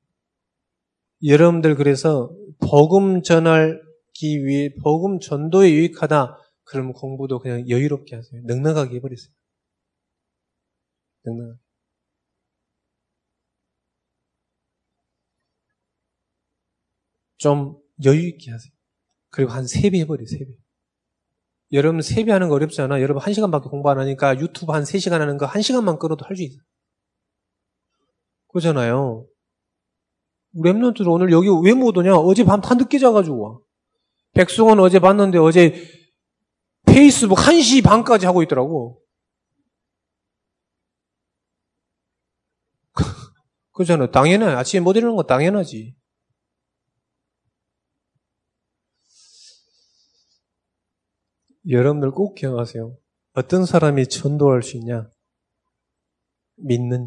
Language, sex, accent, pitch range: Korean, male, native, 120-180 Hz